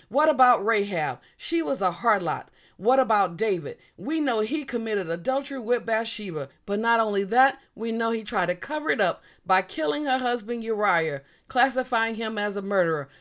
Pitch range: 185-265 Hz